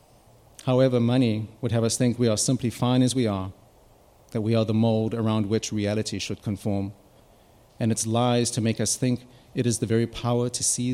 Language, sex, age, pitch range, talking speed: English, male, 30-49, 110-125 Hz, 205 wpm